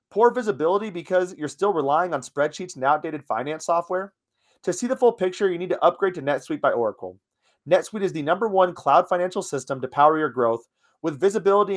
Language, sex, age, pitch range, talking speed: English, male, 30-49, 130-185 Hz, 200 wpm